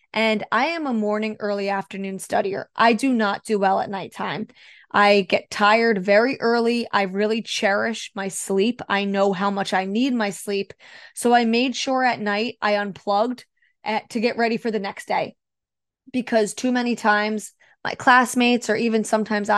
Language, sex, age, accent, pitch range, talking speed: English, female, 20-39, American, 205-235 Hz, 175 wpm